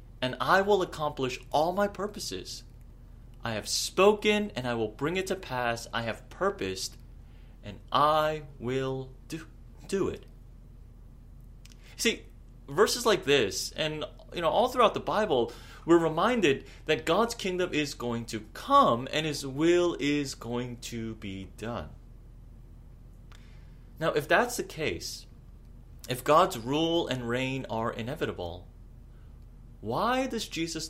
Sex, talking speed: male, 135 wpm